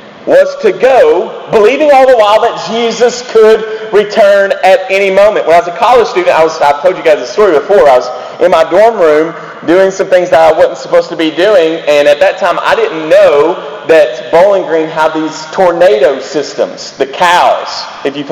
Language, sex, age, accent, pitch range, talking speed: English, male, 40-59, American, 170-245 Hz, 200 wpm